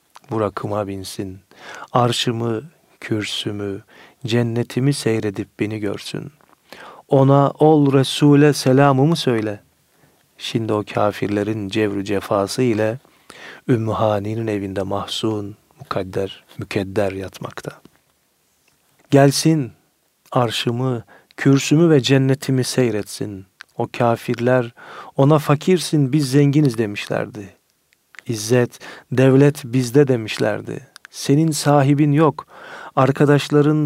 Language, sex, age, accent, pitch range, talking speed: Turkish, male, 40-59, native, 105-140 Hz, 80 wpm